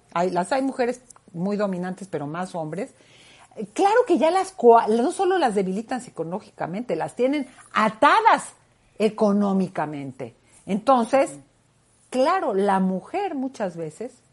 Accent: Mexican